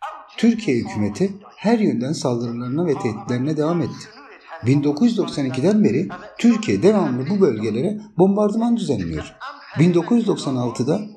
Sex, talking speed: male, 95 wpm